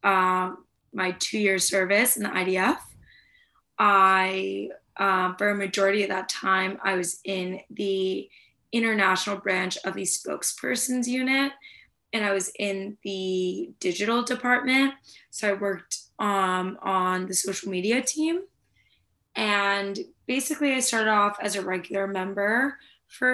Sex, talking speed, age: female, 135 wpm, 20-39